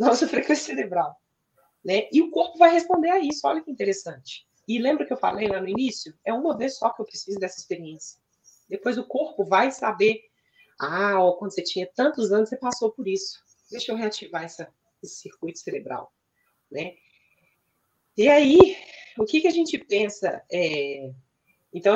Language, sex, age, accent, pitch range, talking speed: Portuguese, female, 30-49, Brazilian, 190-260 Hz, 170 wpm